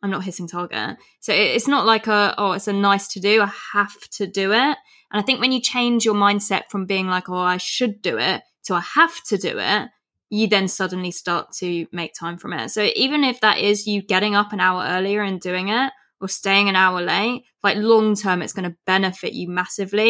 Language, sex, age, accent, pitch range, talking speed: English, female, 20-39, British, 190-230 Hz, 235 wpm